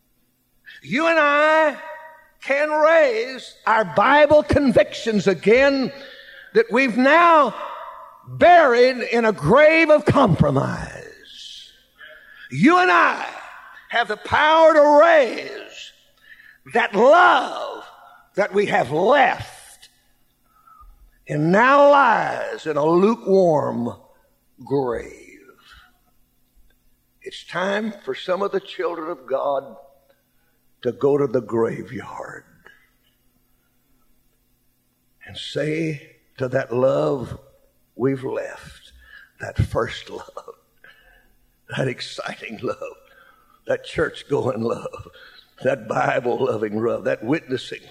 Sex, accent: male, American